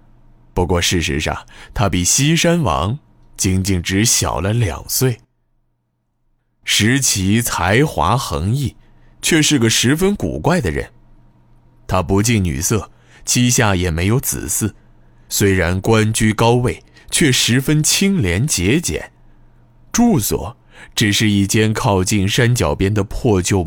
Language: Chinese